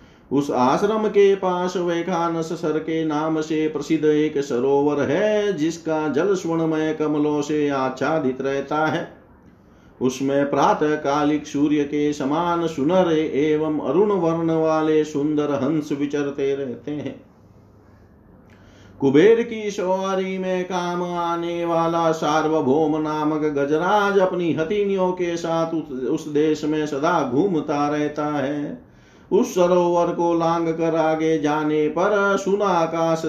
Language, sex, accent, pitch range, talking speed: Hindi, male, native, 150-170 Hz, 125 wpm